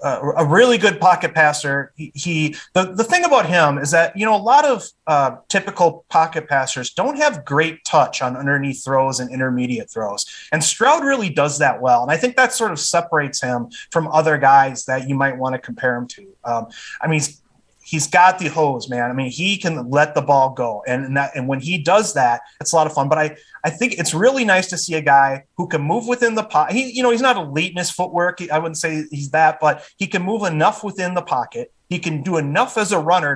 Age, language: 30-49, English